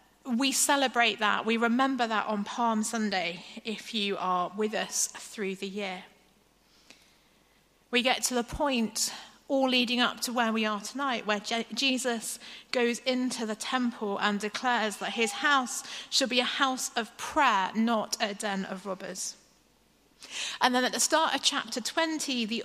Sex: female